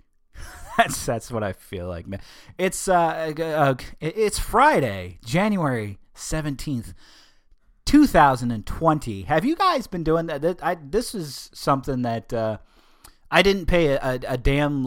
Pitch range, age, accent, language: 110-140 Hz, 30-49, American, English